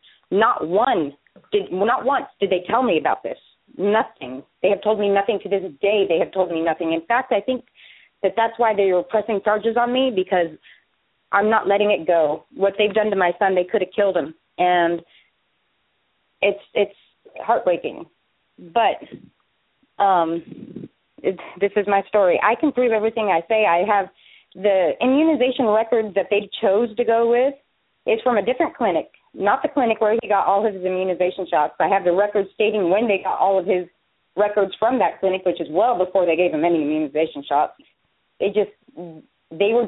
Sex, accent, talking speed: female, American, 190 wpm